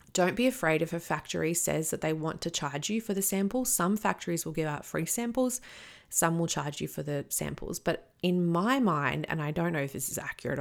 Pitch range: 155-185 Hz